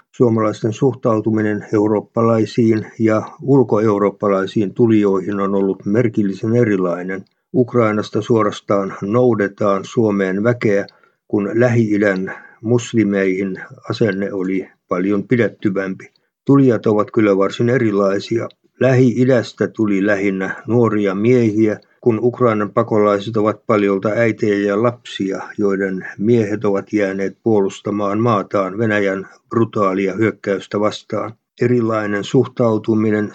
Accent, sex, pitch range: native, male, 100-115 Hz